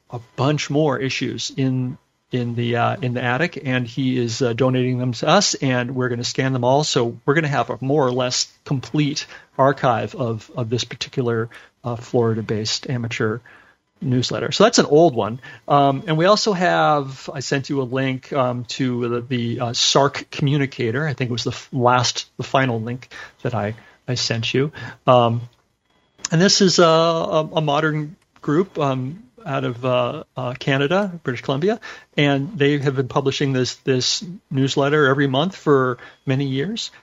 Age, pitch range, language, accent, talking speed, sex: 40-59, 125-150 Hz, English, American, 180 wpm, male